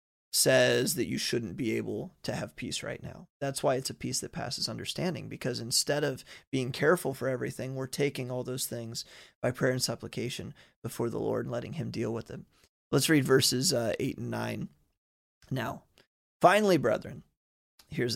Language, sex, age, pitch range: English, male, 30-49, 125-160 Hz